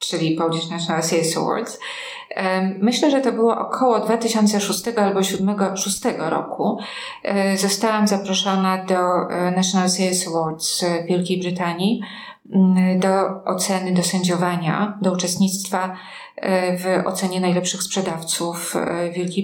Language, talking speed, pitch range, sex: Polish, 100 wpm, 180-200 Hz, female